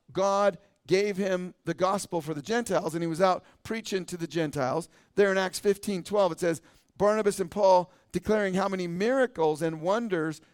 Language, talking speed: English, 180 wpm